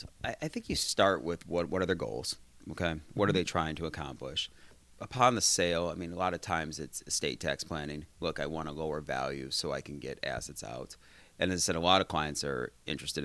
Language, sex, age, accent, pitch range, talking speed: English, male, 30-49, American, 75-95 Hz, 235 wpm